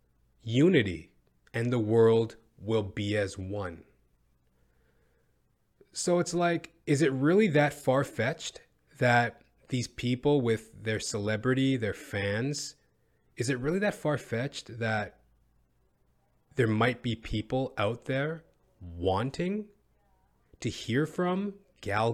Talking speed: 110 wpm